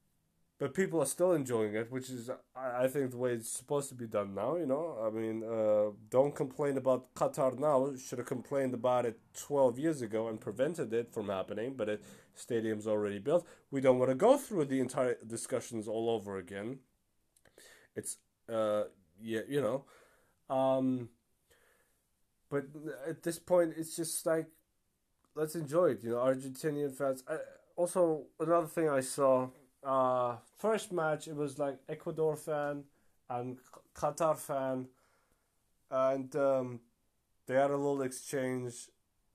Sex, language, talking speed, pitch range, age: male, English, 155 wpm, 115-145 Hz, 20-39